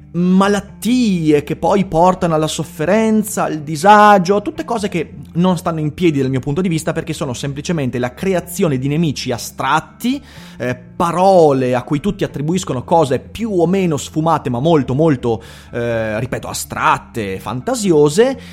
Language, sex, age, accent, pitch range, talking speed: Italian, male, 30-49, native, 130-195 Hz, 150 wpm